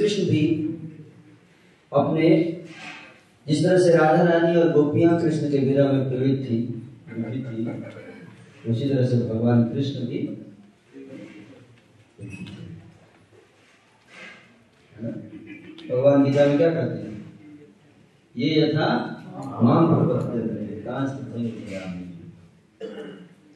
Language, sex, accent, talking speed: Hindi, male, native, 65 wpm